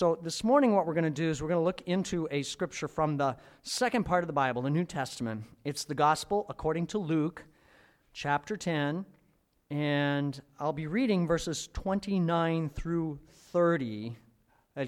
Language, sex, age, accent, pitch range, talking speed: English, male, 40-59, American, 135-180 Hz, 170 wpm